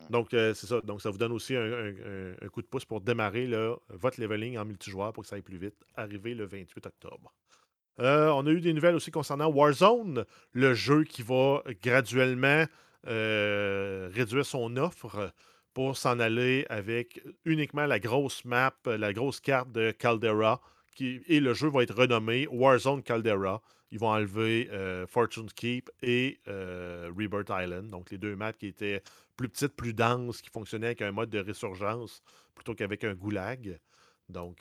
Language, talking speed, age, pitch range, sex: French, 175 wpm, 40-59, 105-135 Hz, male